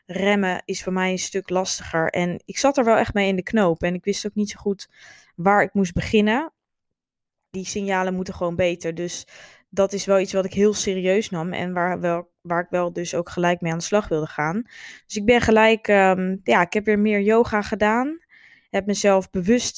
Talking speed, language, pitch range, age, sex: 215 wpm, Dutch, 185-215 Hz, 20-39, female